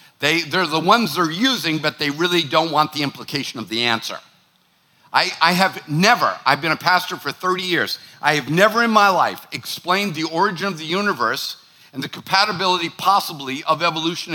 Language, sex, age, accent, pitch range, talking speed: English, male, 50-69, American, 145-185 Hz, 190 wpm